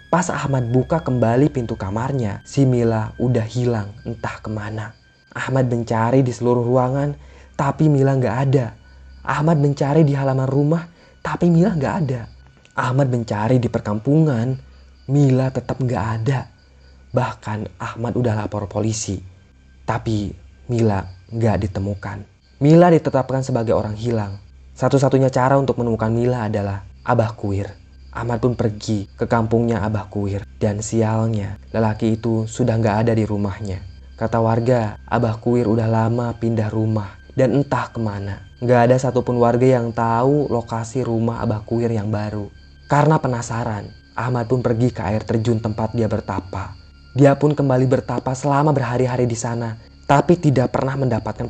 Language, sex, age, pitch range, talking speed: Indonesian, male, 20-39, 105-130 Hz, 140 wpm